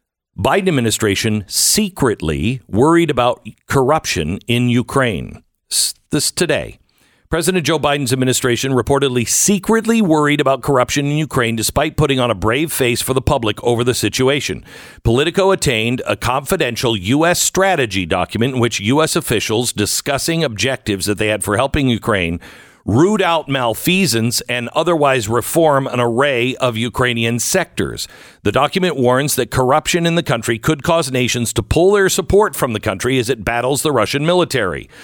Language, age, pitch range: English, 50-69, 115-160 Hz